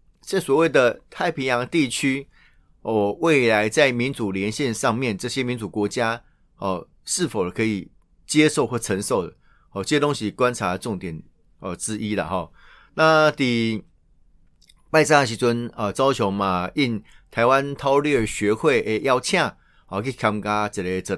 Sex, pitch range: male, 110-150 Hz